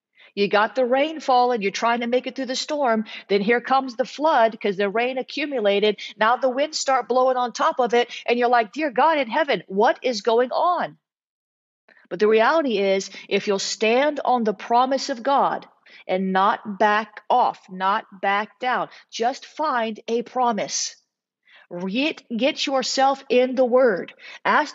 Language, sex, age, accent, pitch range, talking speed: English, female, 40-59, American, 210-260 Hz, 170 wpm